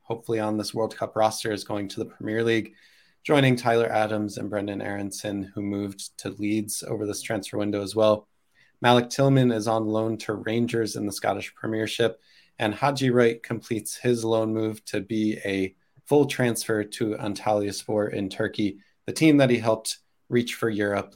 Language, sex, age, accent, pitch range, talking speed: English, male, 20-39, American, 105-125 Hz, 180 wpm